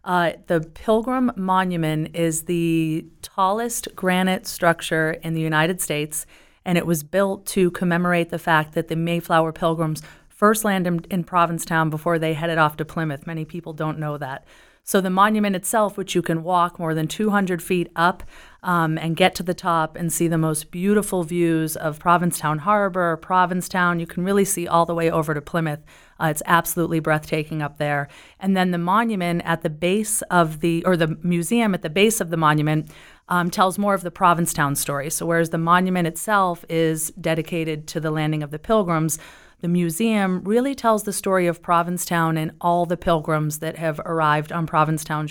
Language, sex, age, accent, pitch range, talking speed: English, female, 30-49, American, 160-180 Hz, 185 wpm